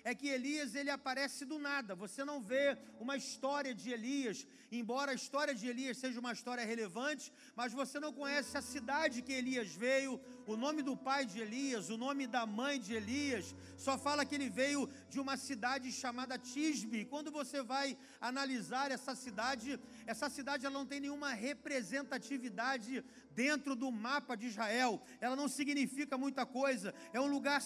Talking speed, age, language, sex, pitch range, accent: 175 wpm, 40-59, Portuguese, male, 245-280 Hz, Brazilian